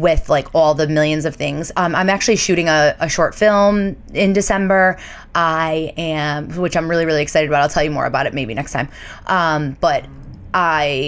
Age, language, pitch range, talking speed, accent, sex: 20-39, English, 150-185 Hz, 200 wpm, American, female